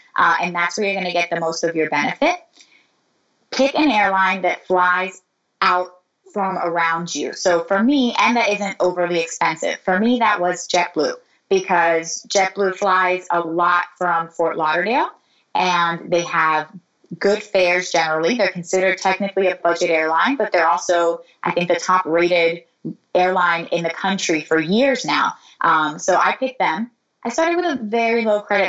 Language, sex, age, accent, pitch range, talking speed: English, female, 20-39, American, 175-230 Hz, 170 wpm